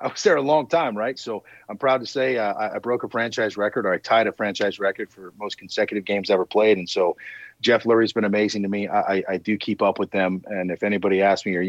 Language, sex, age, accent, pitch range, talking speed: English, male, 30-49, American, 105-145 Hz, 275 wpm